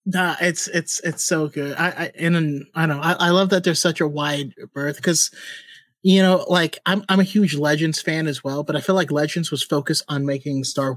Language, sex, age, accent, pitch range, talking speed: English, male, 30-49, American, 135-170 Hz, 235 wpm